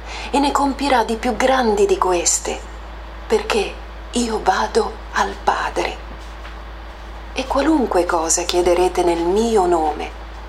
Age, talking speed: 40-59, 115 wpm